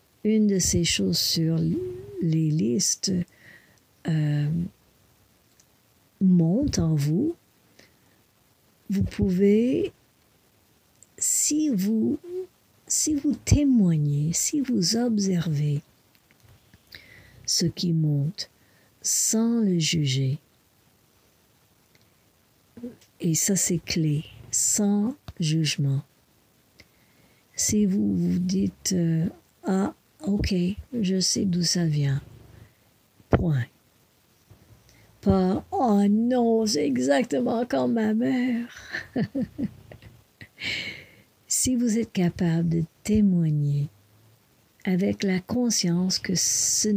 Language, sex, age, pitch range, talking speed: English, female, 60-79, 135-210 Hz, 85 wpm